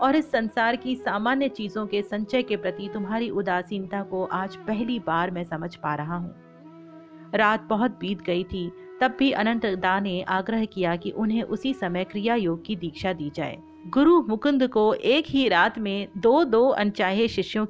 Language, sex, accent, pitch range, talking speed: Hindi, female, native, 180-240 Hz, 155 wpm